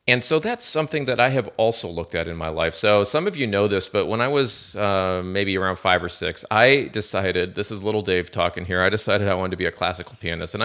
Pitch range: 90-110 Hz